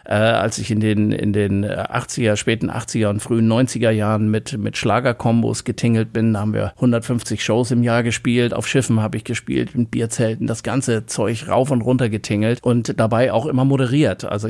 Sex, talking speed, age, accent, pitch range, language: male, 190 wpm, 50-69, German, 105-125 Hz, German